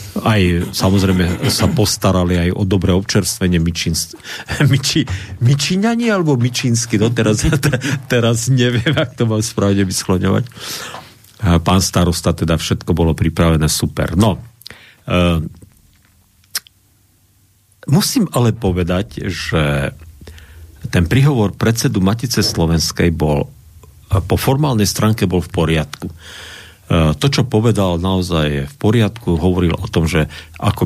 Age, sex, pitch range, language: 50-69, male, 85-110 Hz, Slovak